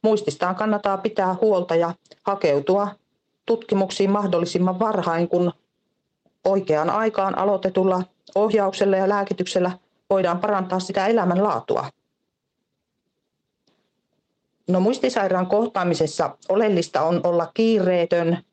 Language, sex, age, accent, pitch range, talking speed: Finnish, female, 40-59, native, 170-210 Hz, 85 wpm